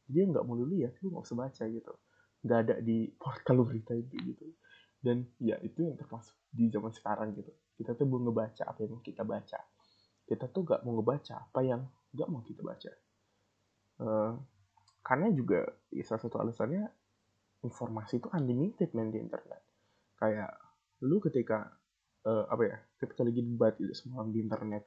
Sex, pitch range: male, 110-135 Hz